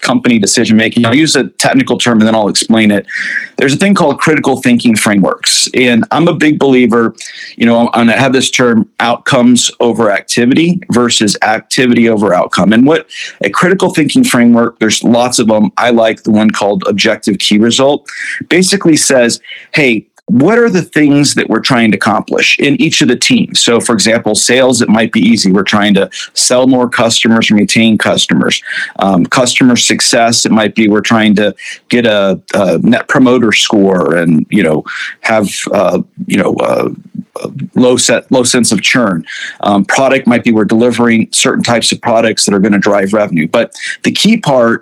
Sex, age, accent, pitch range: male, 40-59, American, 115-140 Hz